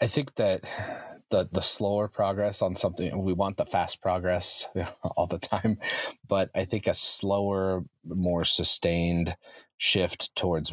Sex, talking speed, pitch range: male, 145 wpm, 80-95 Hz